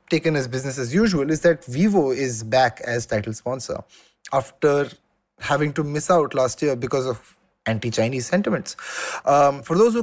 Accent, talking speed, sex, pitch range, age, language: Indian, 175 wpm, male, 130-175 Hz, 20-39, English